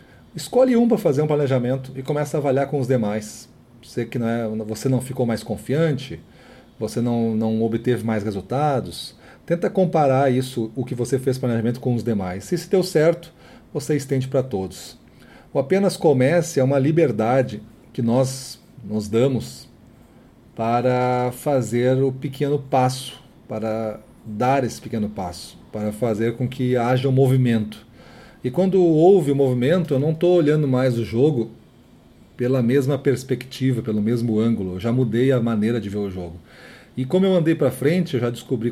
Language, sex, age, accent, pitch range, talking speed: Portuguese, male, 40-59, Brazilian, 115-140 Hz, 170 wpm